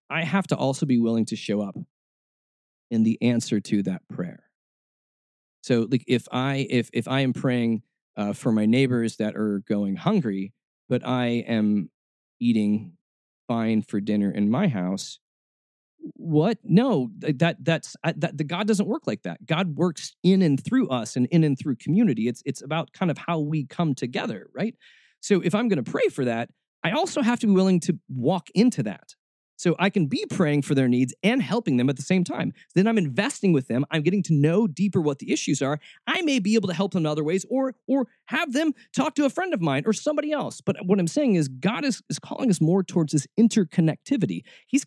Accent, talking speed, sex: American, 215 wpm, male